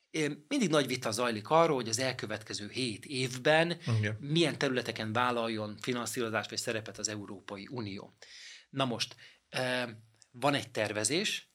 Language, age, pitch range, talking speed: Hungarian, 30-49, 110-135 Hz, 125 wpm